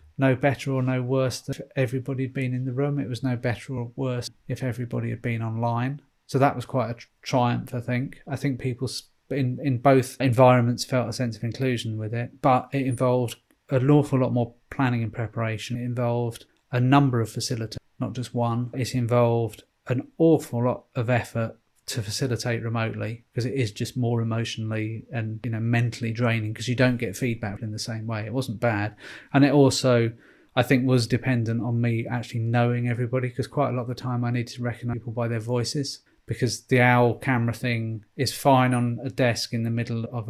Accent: British